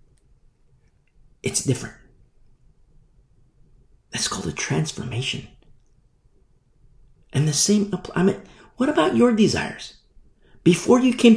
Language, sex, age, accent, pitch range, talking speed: English, male, 40-59, American, 115-165 Hz, 95 wpm